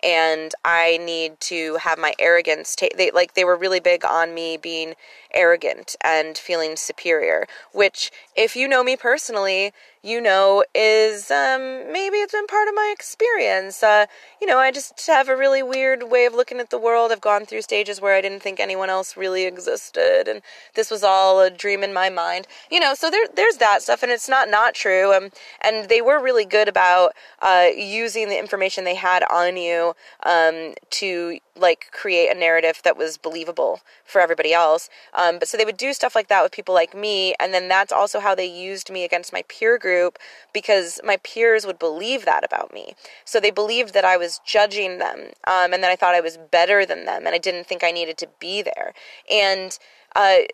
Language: English